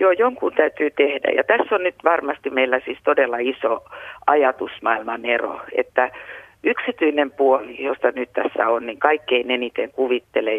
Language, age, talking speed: Finnish, 50-69, 145 wpm